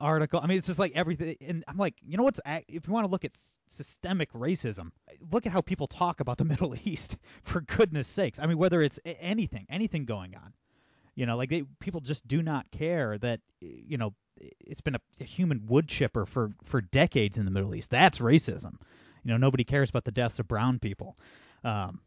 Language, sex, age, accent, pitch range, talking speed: English, male, 30-49, American, 115-155 Hz, 220 wpm